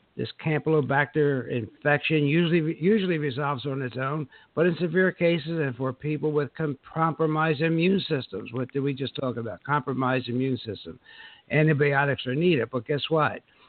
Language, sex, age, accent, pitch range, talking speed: English, male, 60-79, American, 130-155 Hz, 160 wpm